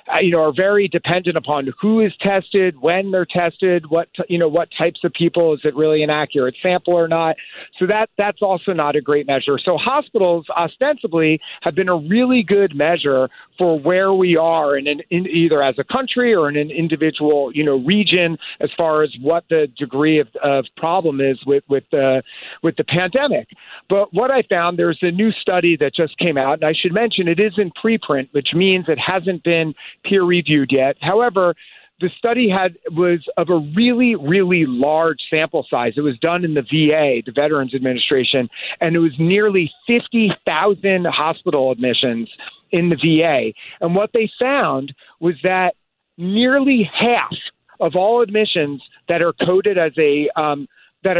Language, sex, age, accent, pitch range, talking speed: English, male, 40-59, American, 150-190 Hz, 180 wpm